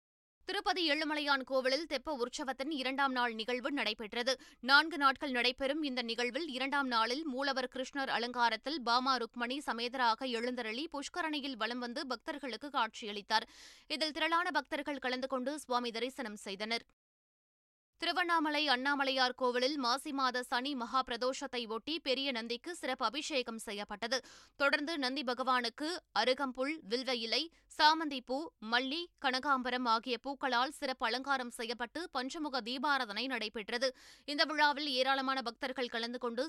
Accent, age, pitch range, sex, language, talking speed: native, 20-39, 240-280 Hz, female, Tamil, 120 wpm